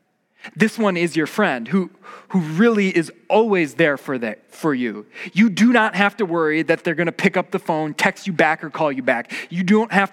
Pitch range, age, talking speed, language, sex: 160-215 Hz, 20-39, 230 wpm, English, male